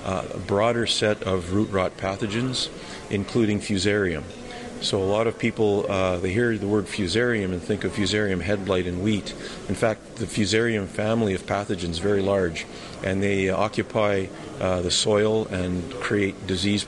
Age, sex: 50-69, male